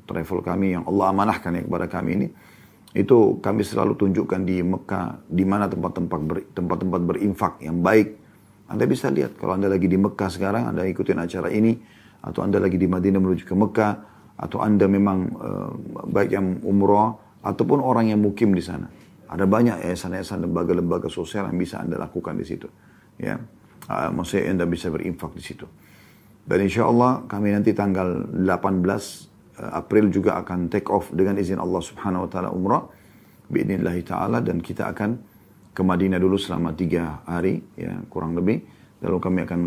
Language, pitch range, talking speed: Indonesian, 90-105 Hz, 170 wpm